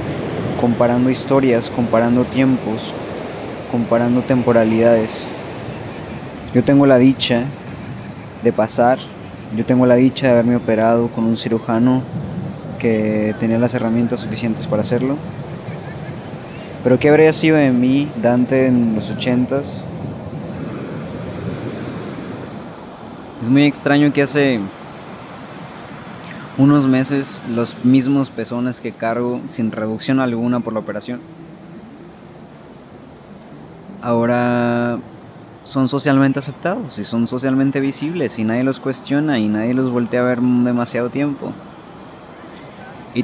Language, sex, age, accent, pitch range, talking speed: Spanish, male, 20-39, Mexican, 115-130 Hz, 110 wpm